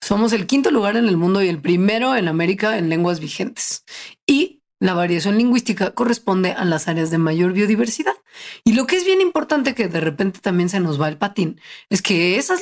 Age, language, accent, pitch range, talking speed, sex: 30-49, Spanish, Mexican, 180-240 Hz, 210 wpm, female